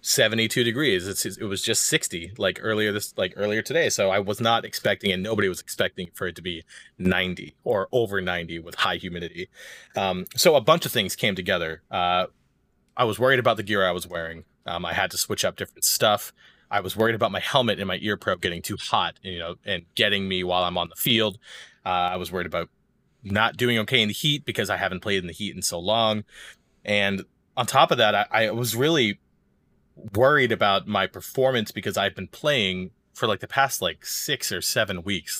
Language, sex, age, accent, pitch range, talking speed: English, male, 30-49, American, 90-115 Hz, 220 wpm